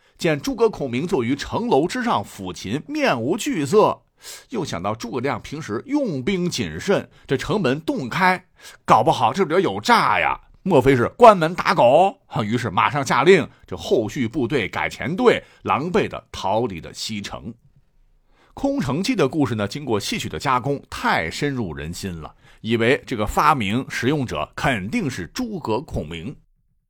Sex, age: male, 50-69